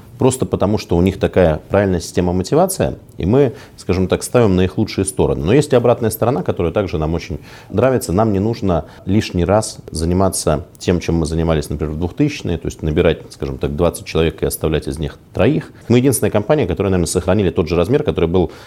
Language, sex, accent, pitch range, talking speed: Russian, male, native, 85-110 Hz, 205 wpm